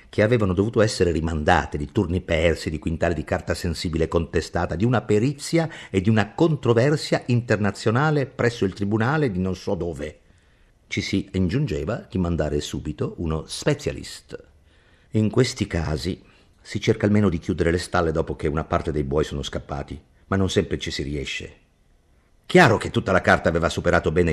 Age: 50-69